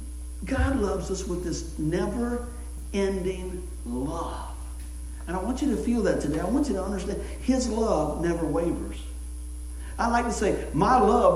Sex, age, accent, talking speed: male, 60-79, American, 165 wpm